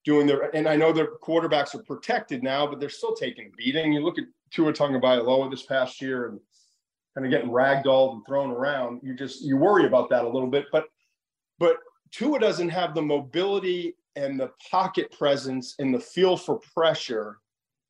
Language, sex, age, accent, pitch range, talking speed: English, male, 40-59, American, 135-180 Hz, 190 wpm